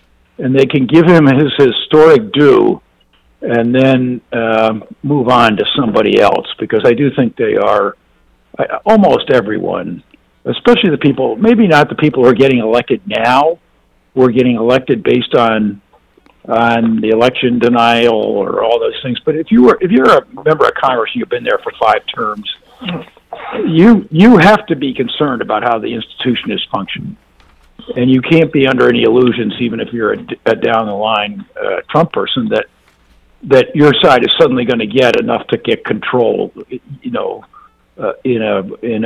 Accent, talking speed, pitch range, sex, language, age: American, 180 wpm, 115-160 Hz, male, English, 50-69